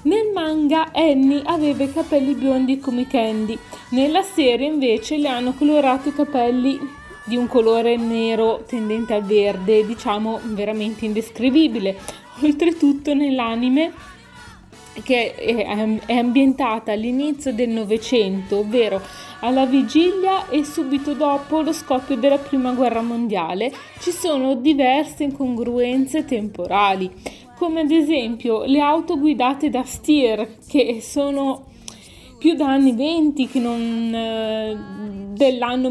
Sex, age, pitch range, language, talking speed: female, 30-49, 215-275 Hz, Italian, 115 wpm